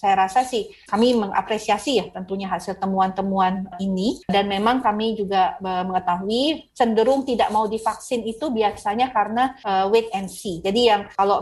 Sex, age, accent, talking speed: female, 30-49, native, 150 wpm